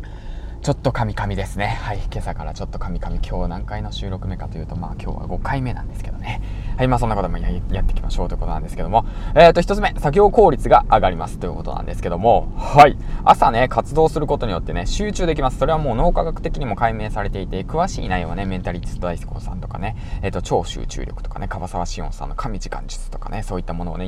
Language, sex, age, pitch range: Japanese, male, 20-39, 90-125 Hz